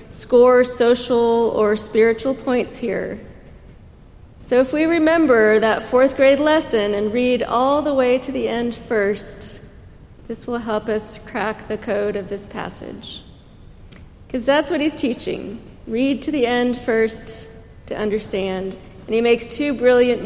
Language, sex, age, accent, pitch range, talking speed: English, female, 40-59, American, 215-260 Hz, 150 wpm